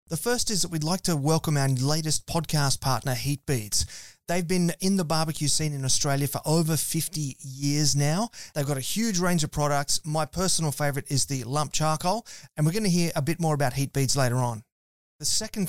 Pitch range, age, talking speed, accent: 135-170 Hz, 30-49, 210 wpm, Australian